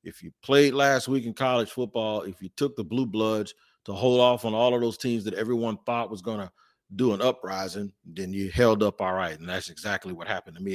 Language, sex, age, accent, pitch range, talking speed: English, male, 40-59, American, 100-130 Hz, 245 wpm